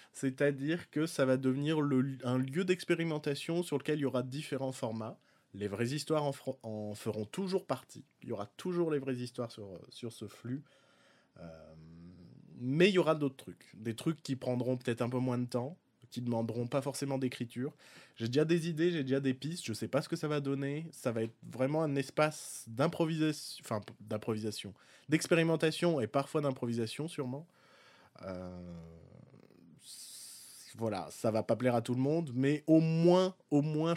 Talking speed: 185 wpm